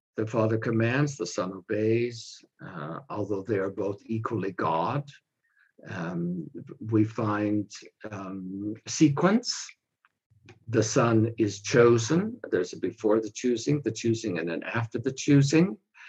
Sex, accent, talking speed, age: male, American, 125 wpm, 60-79